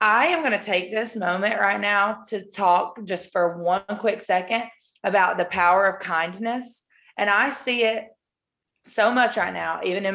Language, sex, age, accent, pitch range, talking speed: English, female, 20-39, American, 190-255 Hz, 185 wpm